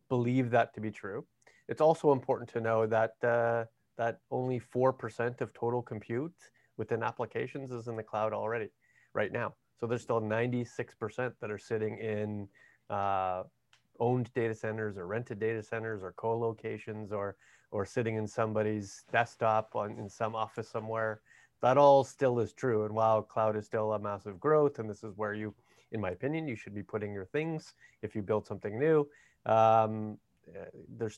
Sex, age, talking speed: male, 30-49, 170 wpm